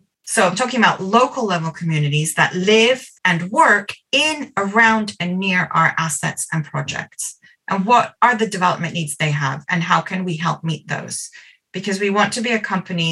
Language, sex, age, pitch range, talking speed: English, female, 30-49, 160-210 Hz, 190 wpm